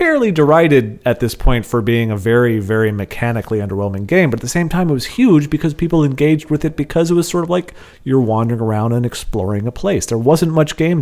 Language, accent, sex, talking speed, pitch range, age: English, American, male, 235 wpm, 100-135 Hz, 30-49